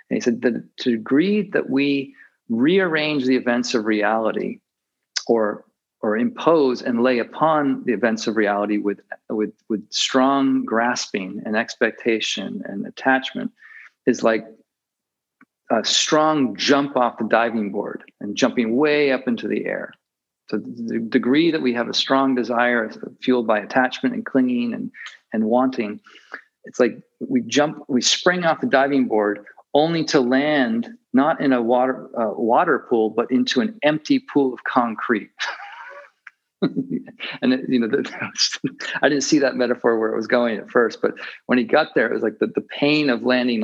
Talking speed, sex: 170 wpm, male